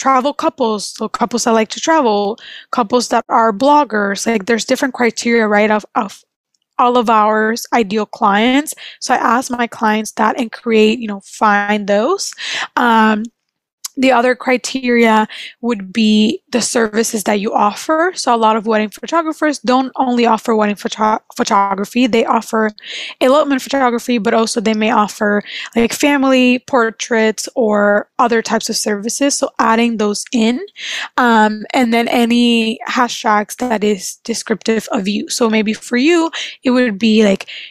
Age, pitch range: 20-39, 220-255 Hz